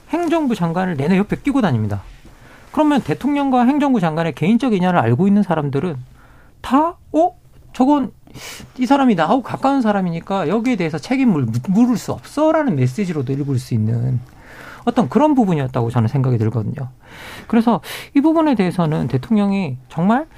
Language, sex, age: Korean, male, 40-59